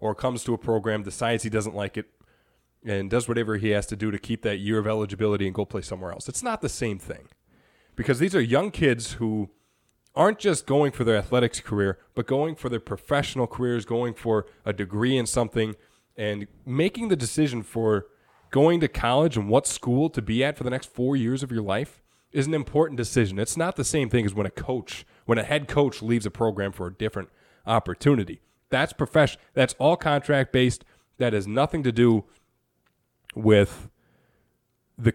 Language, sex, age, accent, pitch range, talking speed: English, male, 20-39, American, 110-145 Hz, 200 wpm